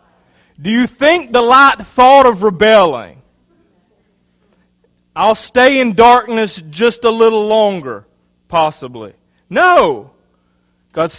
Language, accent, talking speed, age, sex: English, American, 100 wpm, 40-59, male